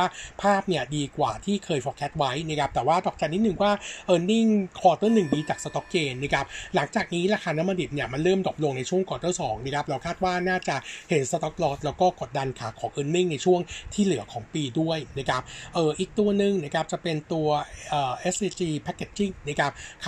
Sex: male